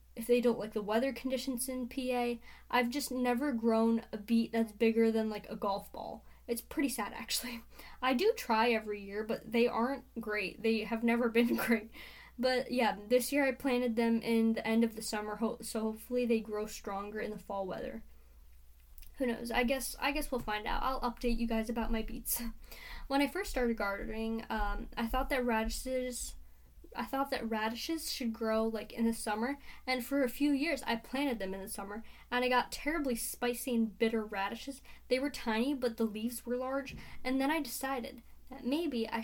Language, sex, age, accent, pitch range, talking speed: English, female, 10-29, American, 225-260 Hz, 200 wpm